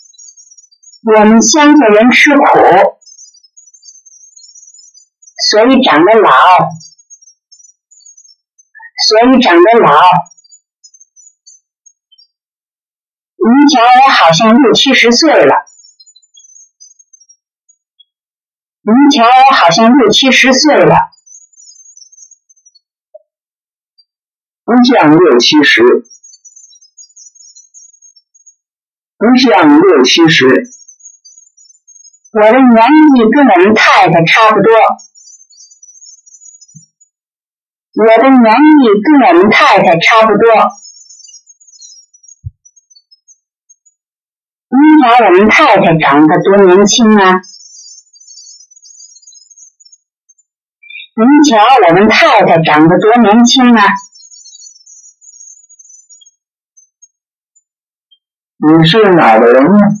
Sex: male